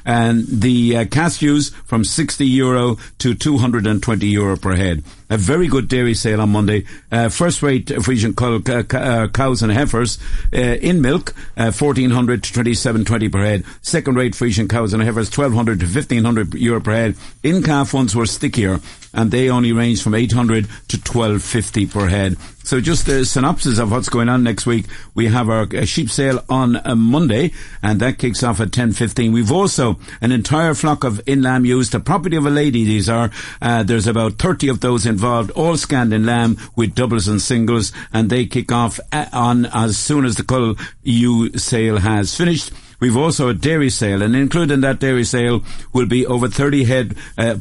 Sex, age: male, 60-79